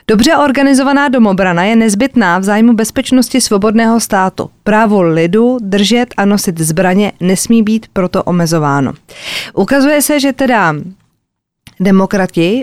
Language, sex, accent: Czech, female, native